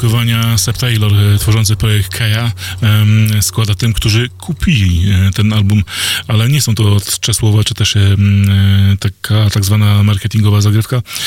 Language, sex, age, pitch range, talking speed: Polish, male, 20-39, 95-110 Hz, 120 wpm